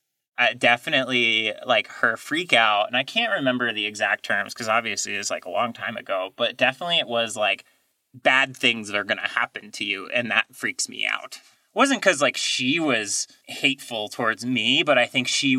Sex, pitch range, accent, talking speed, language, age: male, 120-150 Hz, American, 210 wpm, English, 30-49